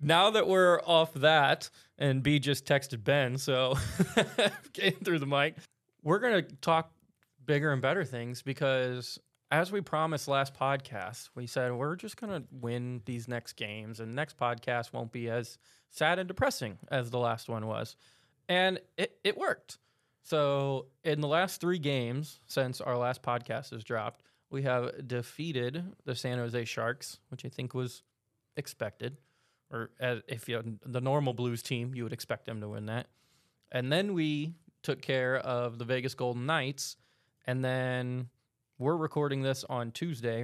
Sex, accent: male, American